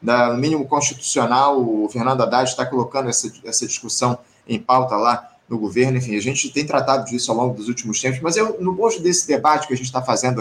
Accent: Brazilian